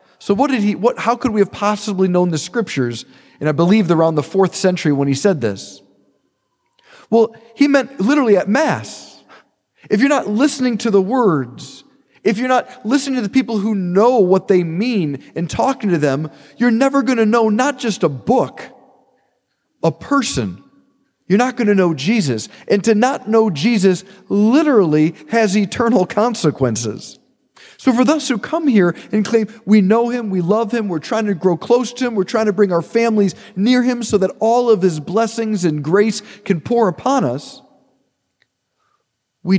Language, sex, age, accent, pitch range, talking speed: English, male, 40-59, American, 180-235 Hz, 185 wpm